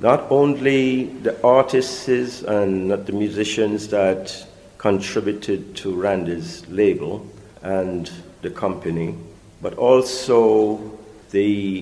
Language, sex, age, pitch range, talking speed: English, male, 50-69, 90-110 Hz, 95 wpm